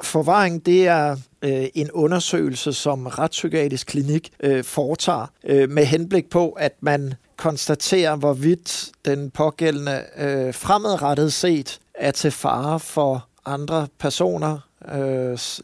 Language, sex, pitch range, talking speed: Danish, male, 135-165 Hz, 100 wpm